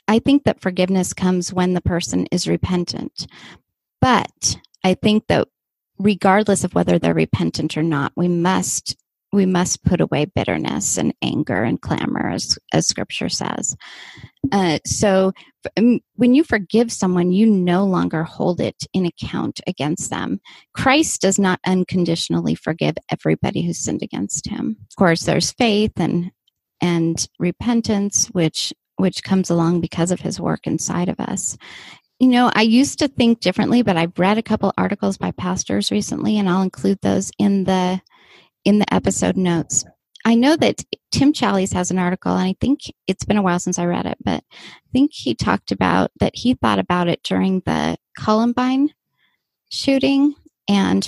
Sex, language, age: female, English, 30-49